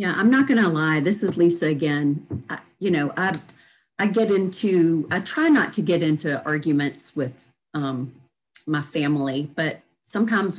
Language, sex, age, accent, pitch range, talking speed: English, female, 40-59, American, 150-185 Hz, 170 wpm